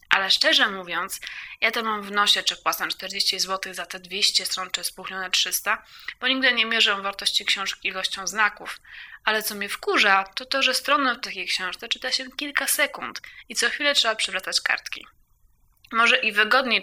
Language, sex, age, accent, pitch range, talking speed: Polish, female, 20-39, native, 200-265 Hz, 180 wpm